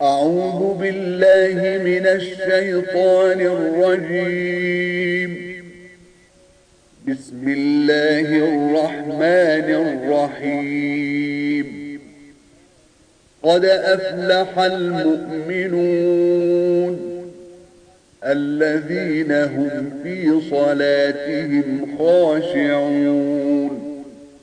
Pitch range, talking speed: 145-180 Hz, 40 wpm